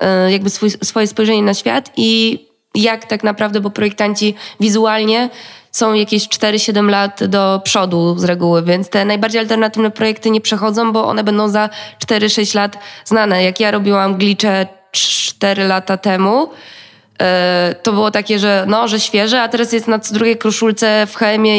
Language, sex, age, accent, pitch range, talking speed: Polish, female, 20-39, native, 200-230 Hz, 160 wpm